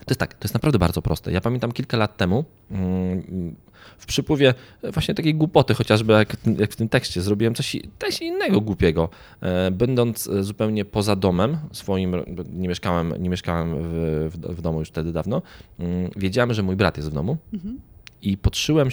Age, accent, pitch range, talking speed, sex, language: 20-39, native, 85-110 Hz, 160 wpm, male, Polish